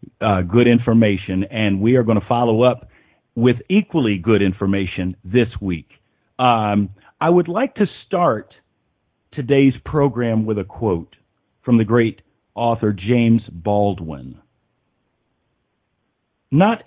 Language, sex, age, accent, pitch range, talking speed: English, male, 50-69, American, 100-140 Hz, 120 wpm